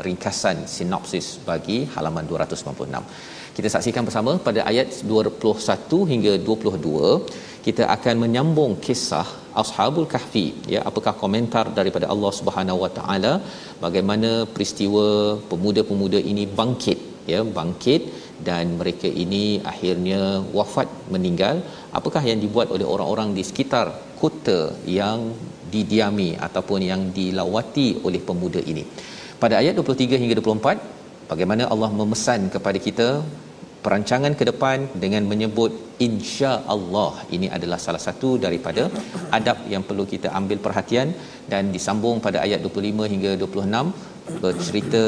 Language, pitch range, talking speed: Malayalam, 100-120 Hz, 120 wpm